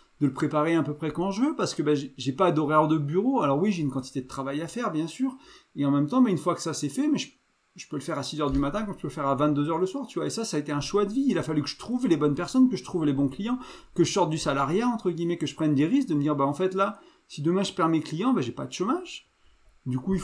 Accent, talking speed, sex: French, 350 wpm, male